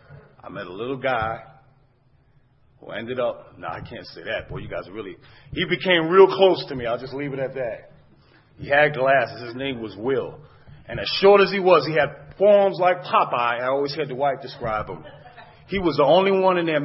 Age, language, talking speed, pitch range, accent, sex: 40-59, English, 215 wpm, 130-160 Hz, American, male